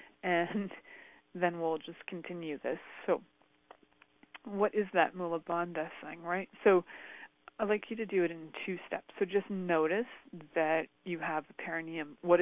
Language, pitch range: English, 160-190 Hz